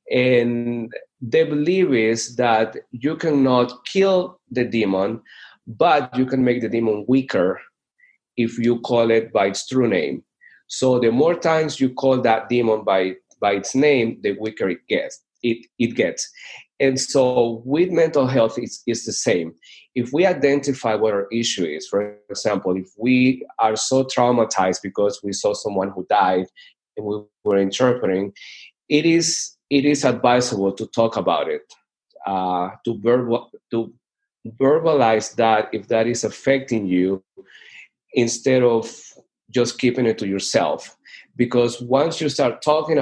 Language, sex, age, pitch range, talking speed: English, male, 30-49, 110-130 Hz, 150 wpm